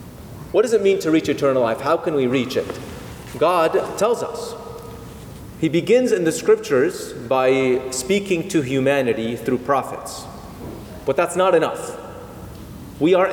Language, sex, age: English, male, 30-49